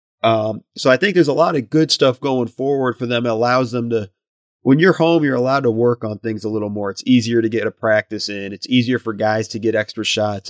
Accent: American